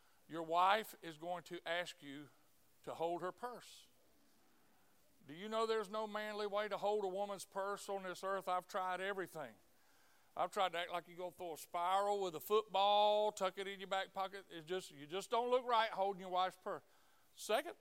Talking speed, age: 200 wpm, 60-79